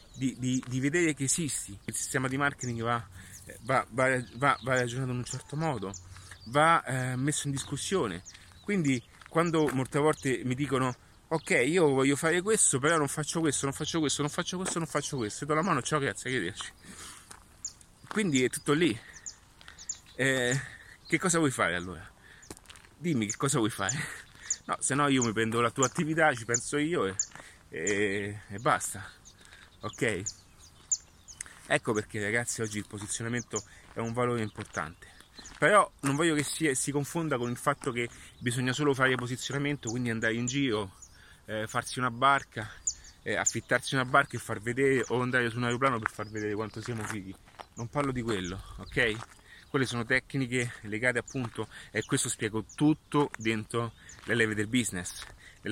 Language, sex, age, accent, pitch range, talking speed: Italian, male, 30-49, native, 105-140 Hz, 170 wpm